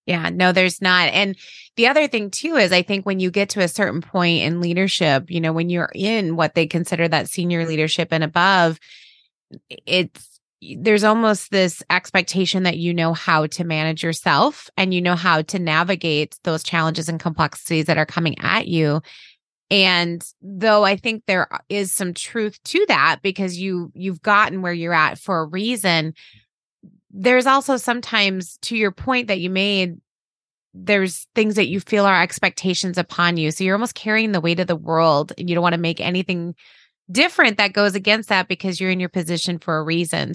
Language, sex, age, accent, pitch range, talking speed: English, female, 20-39, American, 165-200 Hz, 190 wpm